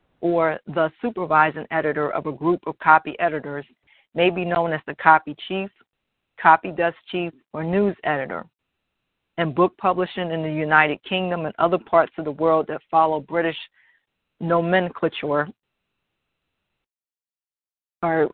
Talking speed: 135 wpm